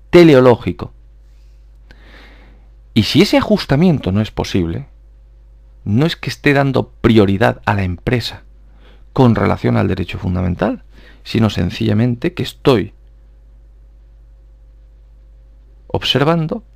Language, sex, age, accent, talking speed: Spanish, male, 50-69, Spanish, 95 wpm